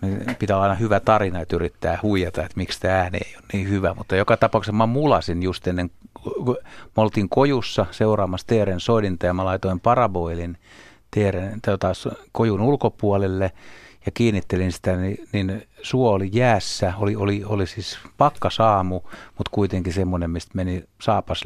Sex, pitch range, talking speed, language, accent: male, 90-105 Hz, 155 wpm, Finnish, native